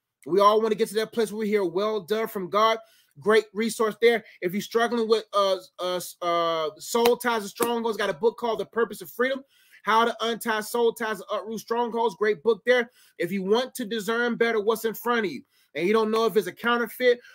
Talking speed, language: 230 wpm, English